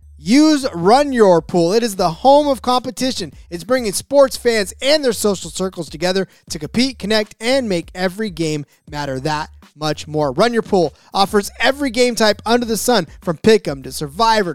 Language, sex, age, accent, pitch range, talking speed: English, male, 20-39, American, 165-235 Hz, 180 wpm